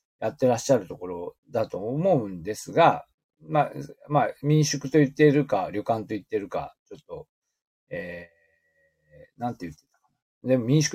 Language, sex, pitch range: Japanese, male, 120-195 Hz